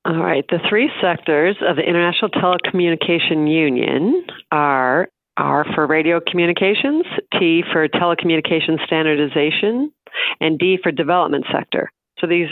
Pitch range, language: 150-175 Hz, English